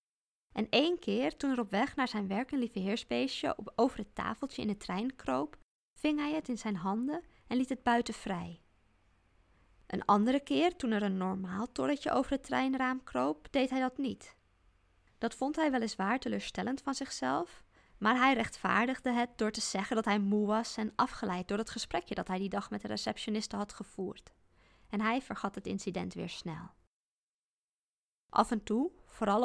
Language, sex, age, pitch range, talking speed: Dutch, female, 20-39, 195-255 Hz, 185 wpm